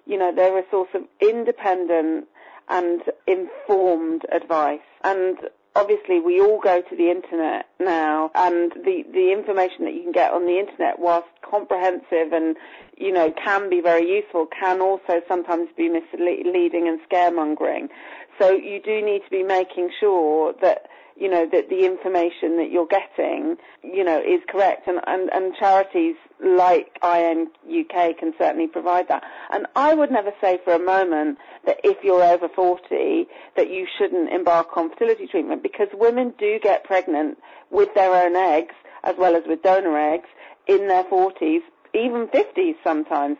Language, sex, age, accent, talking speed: English, female, 40-59, British, 165 wpm